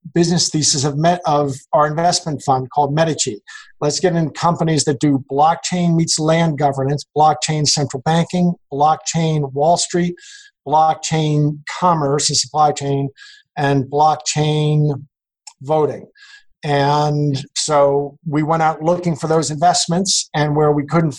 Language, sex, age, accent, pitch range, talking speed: English, male, 50-69, American, 145-175 Hz, 130 wpm